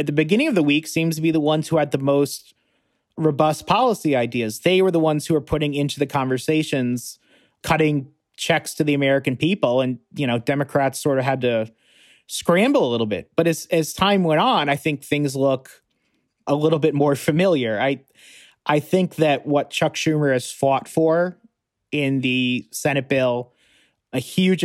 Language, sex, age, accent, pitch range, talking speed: English, male, 30-49, American, 125-155 Hz, 185 wpm